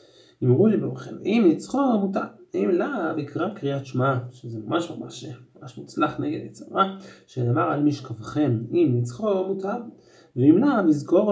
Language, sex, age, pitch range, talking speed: English, male, 30-49, 125-190 Hz, 145 wpm